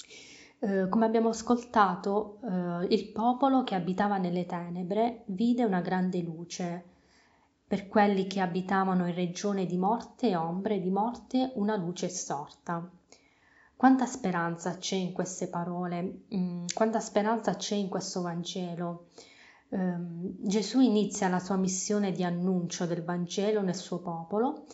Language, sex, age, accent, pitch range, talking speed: Italian, female, 20-39, native, 180-210 Hz, 130 wpm